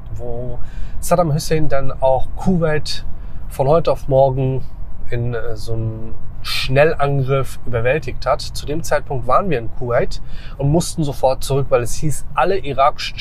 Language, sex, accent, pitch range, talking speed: German, male, German, 115-145 Hz, 145 wpm